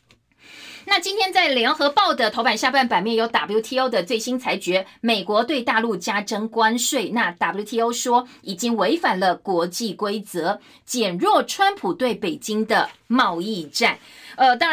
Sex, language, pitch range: female, Chinese, 200-260 Hz